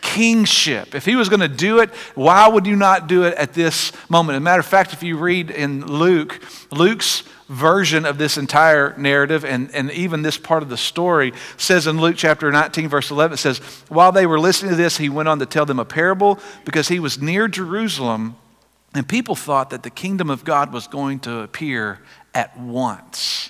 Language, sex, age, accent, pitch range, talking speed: English, male, 50-69, American, 145-210 Hz, 210 wpm